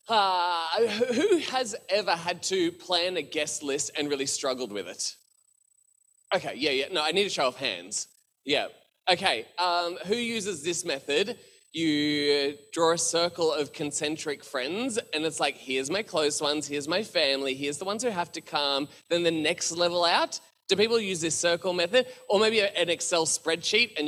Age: 20-39